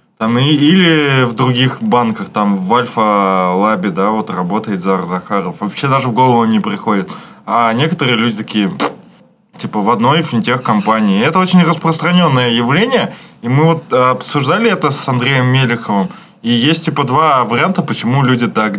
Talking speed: 165 wpm